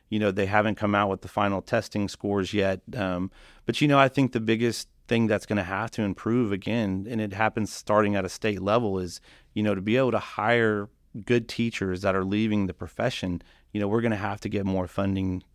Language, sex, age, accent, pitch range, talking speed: English, male, 30-49, American, 95-110 Hz, 235 wpm